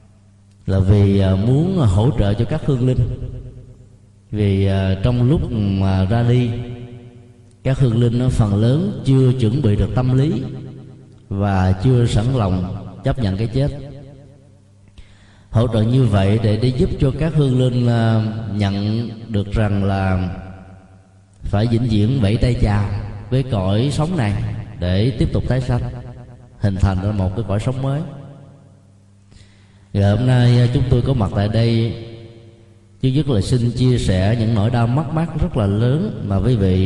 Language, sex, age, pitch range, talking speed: Vietnamese, male, 20-39, 100-125 Hz, 160 wpm